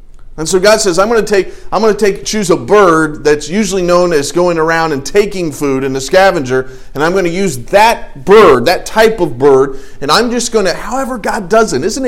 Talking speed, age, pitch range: 240 wpm, 40-59, 115-175 Hz